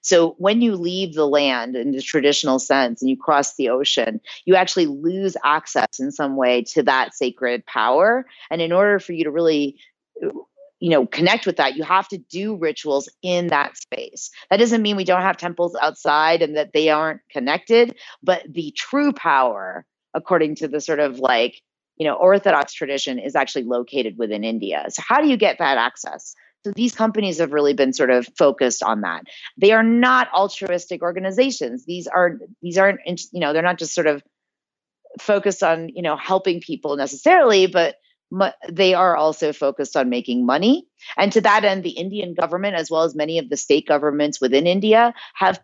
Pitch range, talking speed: 150-200 Hz, 190 wpm